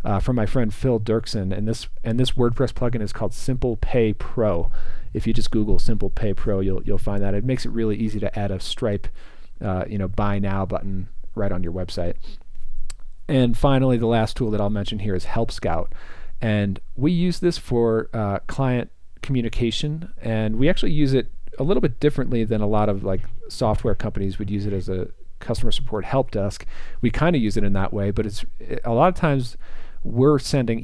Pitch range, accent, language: 100-125 Hz, American, English